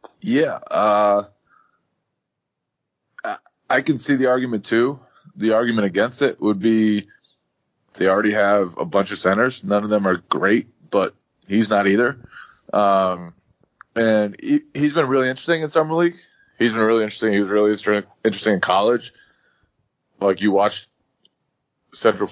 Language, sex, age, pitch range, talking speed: English, male, 20-39, 95-115 Hz, 145 wpm